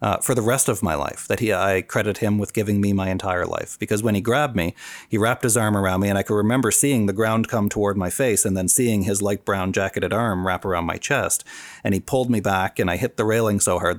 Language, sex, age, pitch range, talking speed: English, male, 40-59, 95-115 Hz, 275 wpm